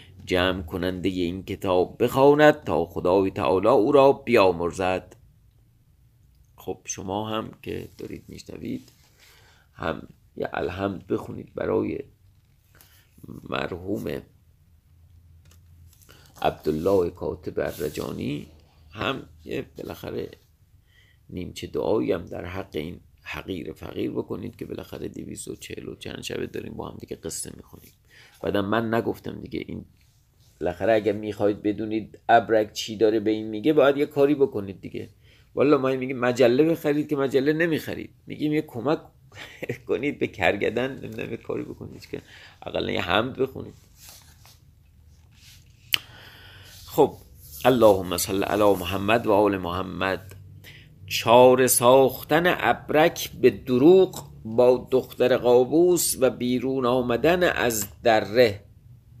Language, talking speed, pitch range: Persian, 115 wpm, 95-125 Hz